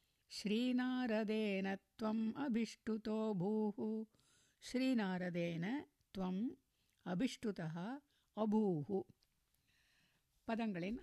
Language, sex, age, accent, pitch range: Tamil, female, 60-79, native, 185-235 Hz